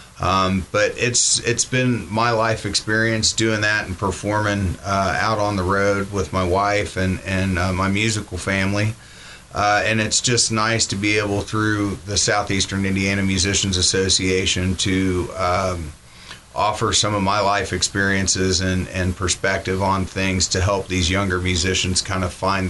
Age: 30-49